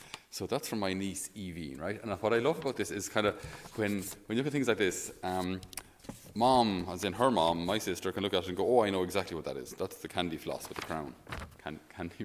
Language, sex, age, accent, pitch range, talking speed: English, male, 30-49, Irish, 95-115 Hz, 260 wpm